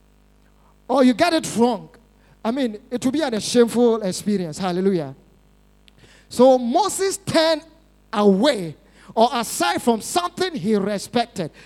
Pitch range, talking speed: 215-290 Hz, 130 wpm